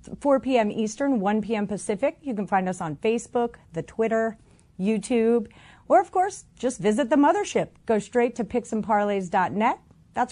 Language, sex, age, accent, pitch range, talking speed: English, female, 40-59, American, 195-250 Hz, 155 wpm